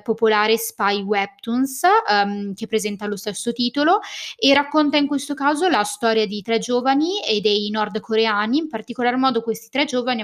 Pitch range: 205-255 Hz